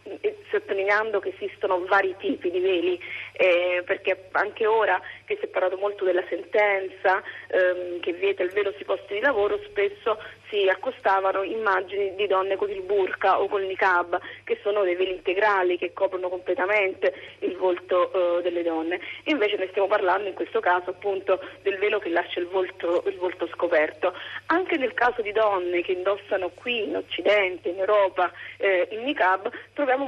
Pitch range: 185-230 Hz